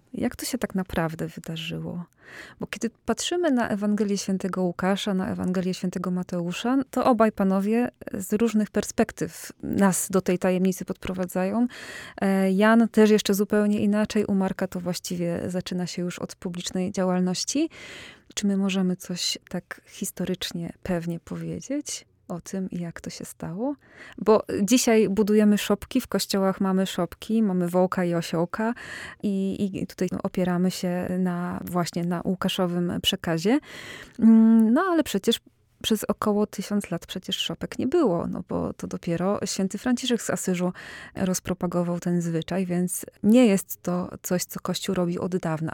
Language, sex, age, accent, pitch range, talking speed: Polish, female, 20-39, native, 180-215 Hz, 145 wpm